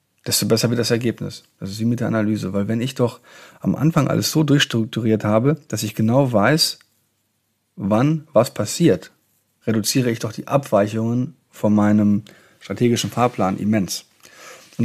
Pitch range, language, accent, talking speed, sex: 110-130 Hz, German, German, 160 wpm, male